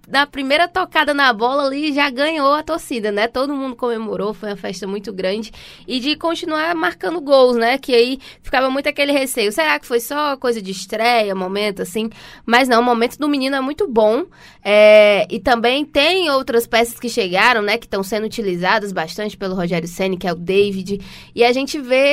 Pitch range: 215-275 Hz